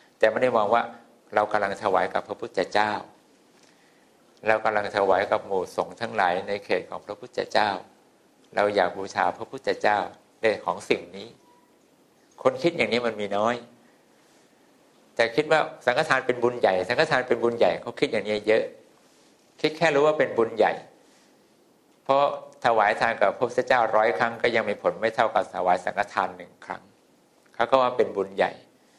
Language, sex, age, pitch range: English, male, 60-79, 105-130 Hz